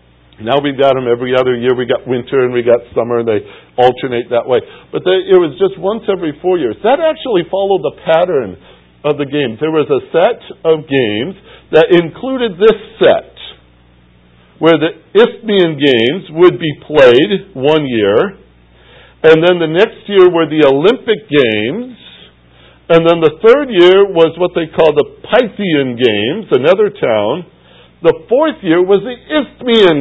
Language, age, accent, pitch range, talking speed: English, 60-79, American, 120-185 Hz, 170 wpm